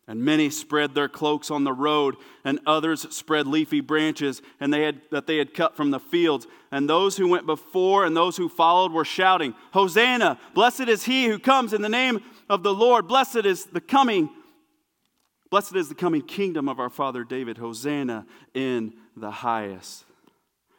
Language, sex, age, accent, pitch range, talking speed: English, male, 40-59, American, 145-200 Hz, 180 wpm